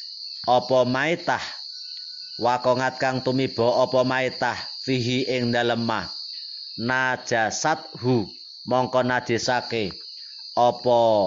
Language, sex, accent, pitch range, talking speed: Indonesian, male, native, 125-140 Hz, 85 wpm